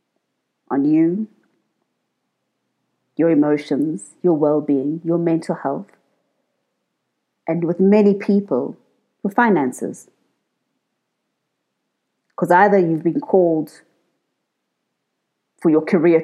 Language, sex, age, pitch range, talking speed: English, female, 30-49, 160-205 Hz, 85 wpm